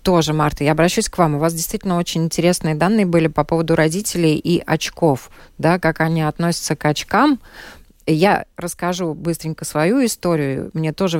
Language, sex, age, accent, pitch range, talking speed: Russian, female, 20-39, native, 155-190 Hz, 160 wpm